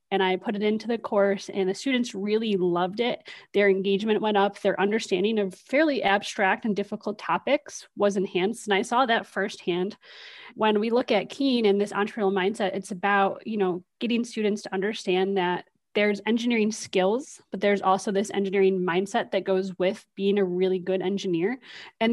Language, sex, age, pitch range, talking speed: English, female, 30-49, 190-220 Hz, 185 wpm